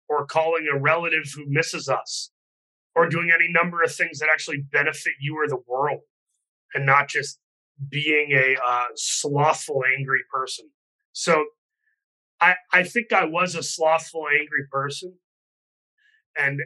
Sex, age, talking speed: male, 30-49, 145 wpm